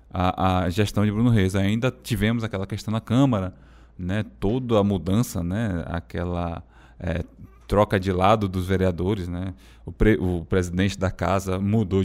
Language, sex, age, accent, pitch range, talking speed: Portuguese, male, 20-39, Brazilian, 90-105 Hz, 160 wpm